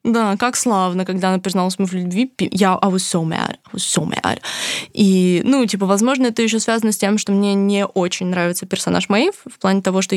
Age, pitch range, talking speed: 20-39, 185-220 Hz, 210 wpm